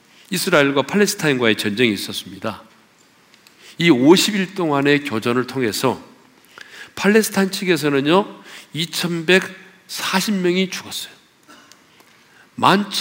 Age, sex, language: 50-69, male, Korean